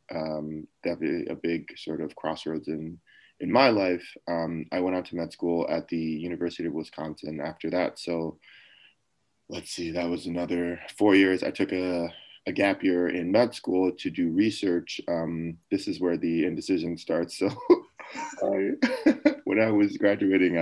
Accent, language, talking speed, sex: American, English, 165 wpm, male